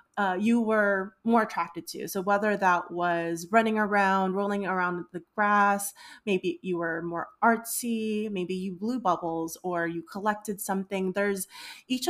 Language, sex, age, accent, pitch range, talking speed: English, female, 20-39, American, 180-220 Hz, 155 wpm